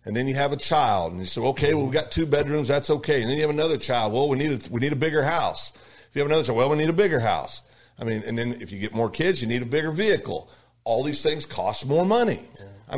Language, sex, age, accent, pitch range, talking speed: English, male, 50-69, American, 110-140 Hz, 295 wpm